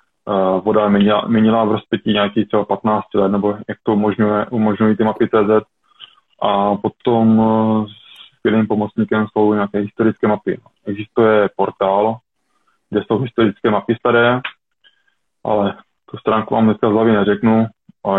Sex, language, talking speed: male, Czech, 135 wpm